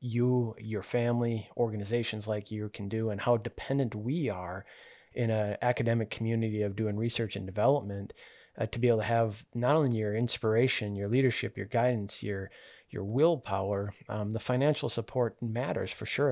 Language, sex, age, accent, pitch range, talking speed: English, male, 30-49, American, 105-120 Hz, 170 wpm